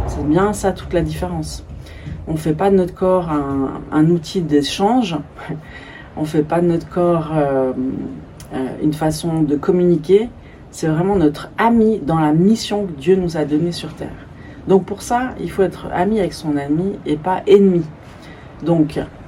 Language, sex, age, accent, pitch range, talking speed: French, female, 40-59, French, 145-190 Hz, 170 wpm